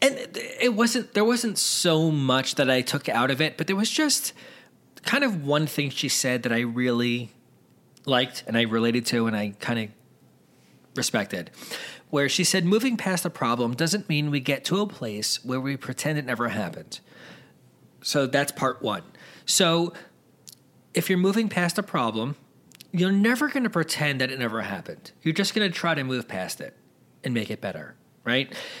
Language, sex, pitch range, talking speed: English, male, 130-190 Hz, 190 wpm